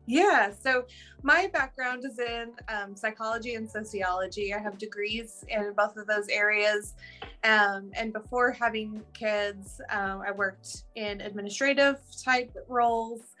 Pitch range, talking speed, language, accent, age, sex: 205-245 Hz, 135 wpm, English, American, 20-39, female